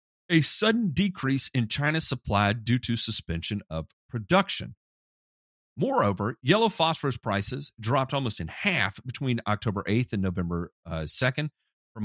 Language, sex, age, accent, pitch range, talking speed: English, male, 40-59, American, 95-125 Hz, 135 wpm